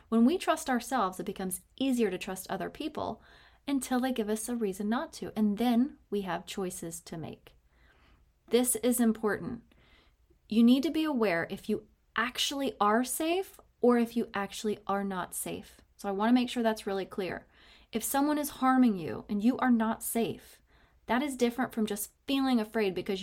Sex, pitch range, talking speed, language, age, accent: female, 200-255 Hz, 190 wpm, English, 20-39, American